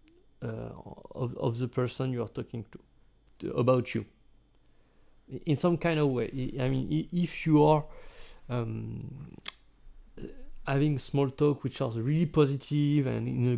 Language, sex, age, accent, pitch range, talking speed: English, male, 40-59, French, 125-155 Hz, 145 wpm